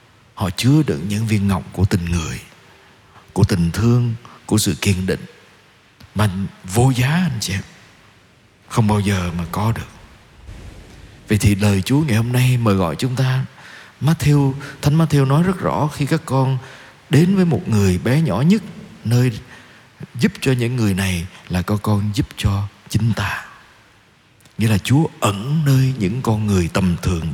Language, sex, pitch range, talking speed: Vietnamese, male, 100-140 Hz, 170 wpm